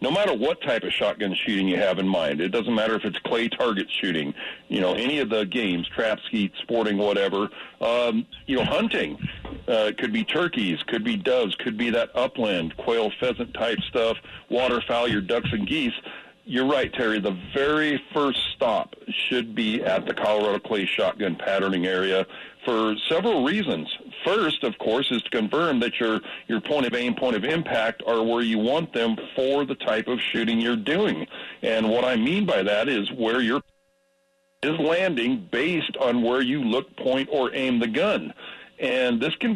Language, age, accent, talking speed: English, 50-69, American, 185 wpm